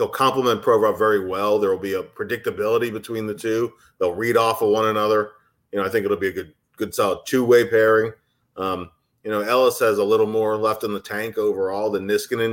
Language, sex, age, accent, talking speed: English, male, 30-49, American, 220 wpm